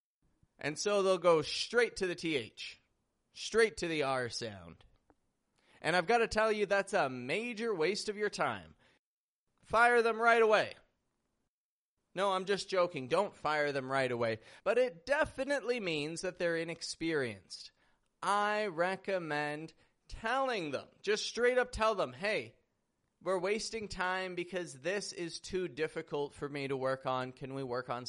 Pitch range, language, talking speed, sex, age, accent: 150-200 Hz, English, 155 wpm, male, 30-49, American